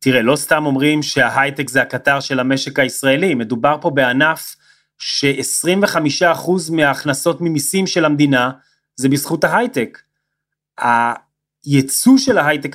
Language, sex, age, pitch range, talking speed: Hebrew, male, 30-49, 130-160 Hz, 115 wpm